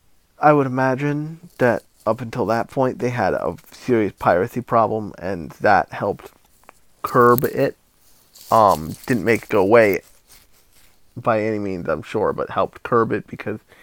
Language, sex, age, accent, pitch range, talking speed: English, male, 20-39, American, 105-130 Hz, 150 wpm